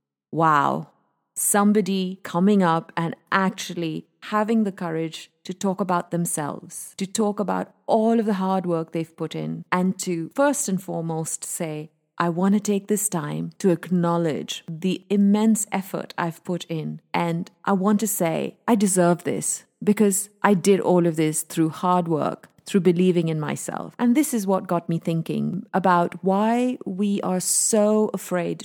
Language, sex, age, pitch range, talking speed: English, female, 30-49, 165-205 Hz, 165 wpm